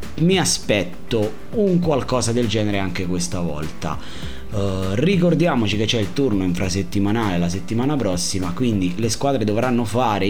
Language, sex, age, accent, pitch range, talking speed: Italian, male, 30-49, native, 90-125 Hz, 135 wpm